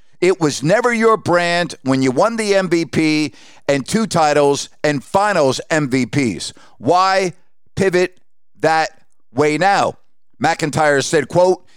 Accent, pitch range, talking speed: American, 150-195 Hz, 120 wpm